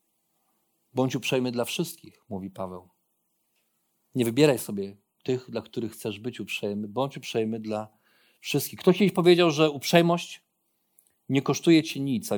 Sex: male